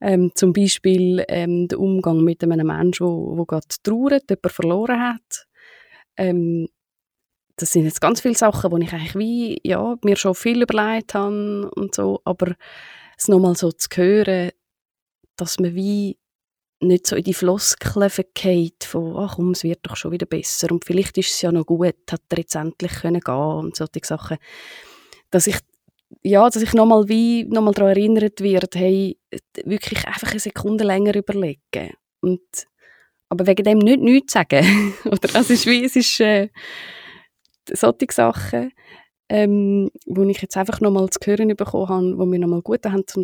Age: 20-39